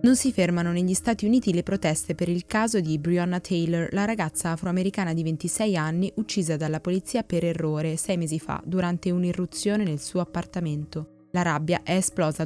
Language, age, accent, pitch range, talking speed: Italian, 20-39, native, 160-195 Hz, 180 wpm